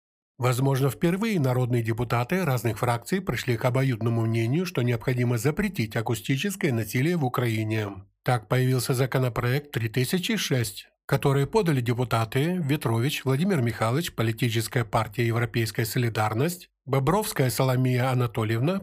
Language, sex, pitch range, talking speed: Ukrainian, male, 120-155 Hz, 110 wpm